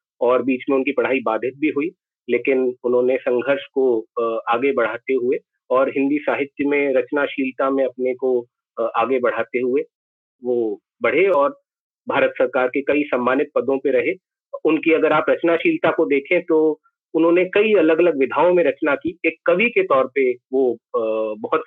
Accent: native